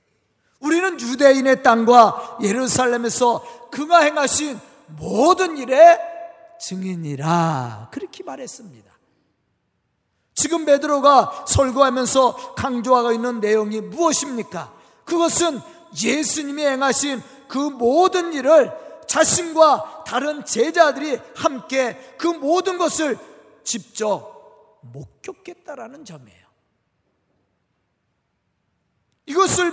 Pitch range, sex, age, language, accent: 240-295 Hz, male, 40-59, Korean, native